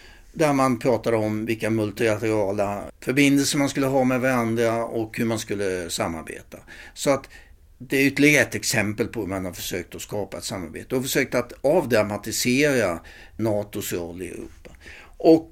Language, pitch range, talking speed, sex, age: Swedish, 100-140 Hz, 160 wpm, male, 60-79